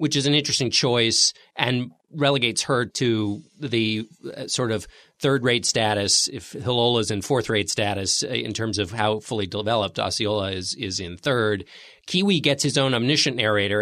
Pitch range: 105-130 Hz